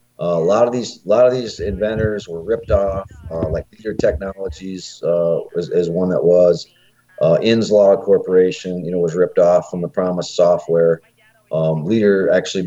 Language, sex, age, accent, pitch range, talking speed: English, male, 40-59, American, 90-110 Hz, 180 wpm